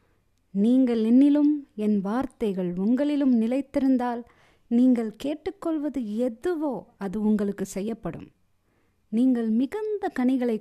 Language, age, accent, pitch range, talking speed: Tamil, 20-39, native, 175-260 Hz, 85 wpm